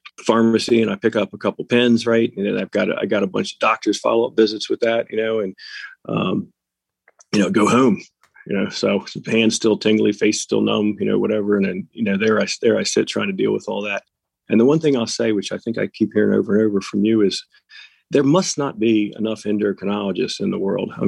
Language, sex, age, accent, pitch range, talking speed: English, male, 40-59, American, 100-115 Hz, 250 wpm